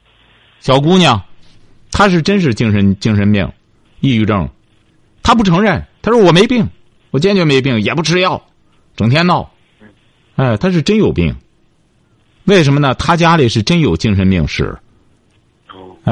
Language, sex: Chinese, male